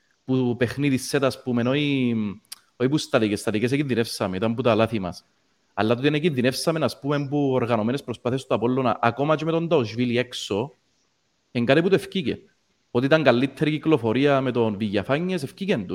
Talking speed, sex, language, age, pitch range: 145 wpm, male, Greek, 30-49, 115-165 Hz